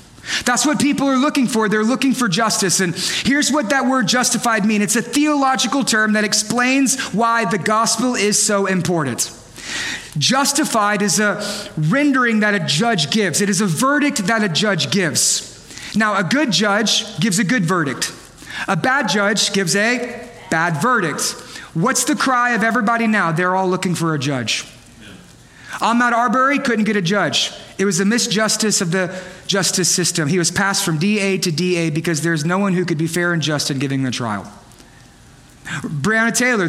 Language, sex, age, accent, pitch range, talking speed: English, male, 30-49, American, 180-230 Hz, 180 wpm